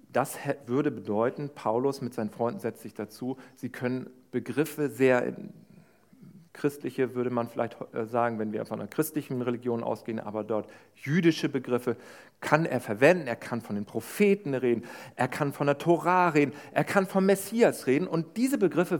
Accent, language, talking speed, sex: German, German, 165 wpm, male